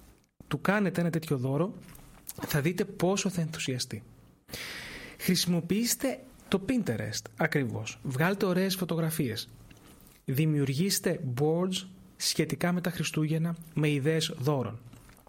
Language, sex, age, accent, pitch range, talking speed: Greek, male, 30-49, native, 135-175 Hz, 100 wpm